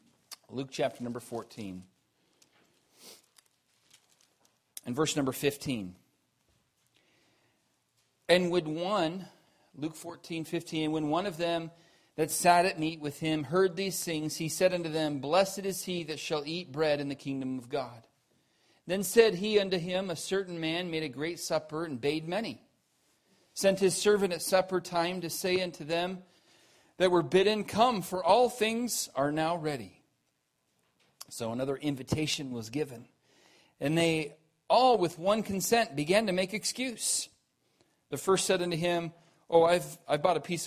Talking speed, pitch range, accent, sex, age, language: 155 wpm, 145-185 Hz, American, male, 40-59, English